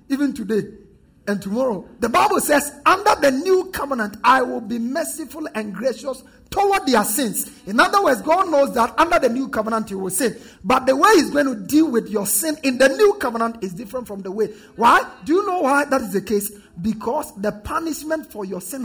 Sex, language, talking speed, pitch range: male, English, 215 wpm, 205-280 Hz